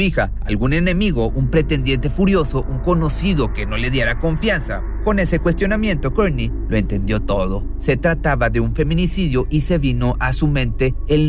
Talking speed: 170 wpm